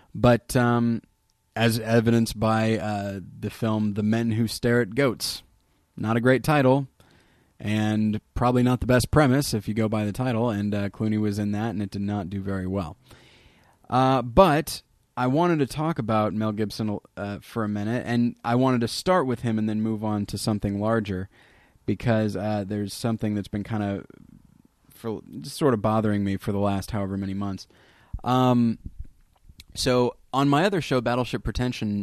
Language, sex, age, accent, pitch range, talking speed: English, male, 20-39, American, 105-125 Hz, 180 wpm